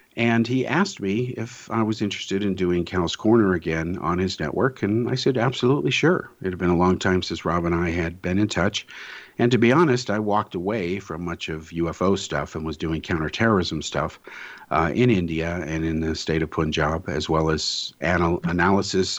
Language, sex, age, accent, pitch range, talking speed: English, male, 50-69, American, 80-105 Hz, 205 wpm